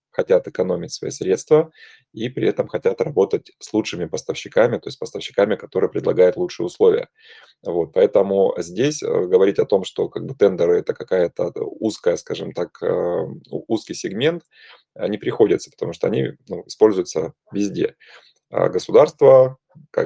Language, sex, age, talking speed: Russian, male, 20-39, 125 wpm